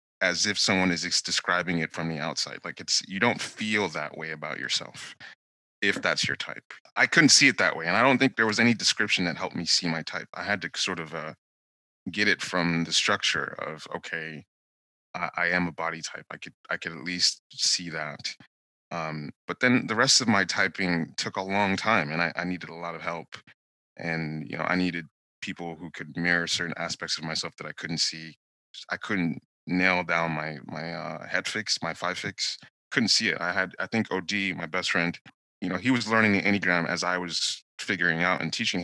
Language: English